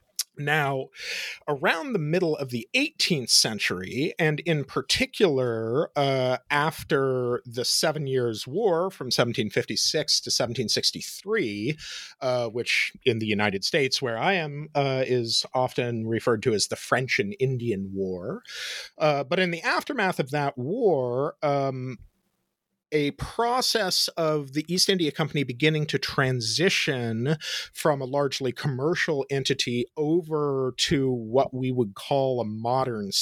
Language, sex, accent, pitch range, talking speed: English, male, American, 120-155 Hz, 130 wpm